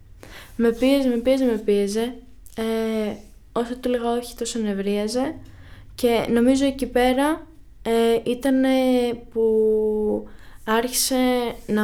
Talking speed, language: 110 wpm, Greek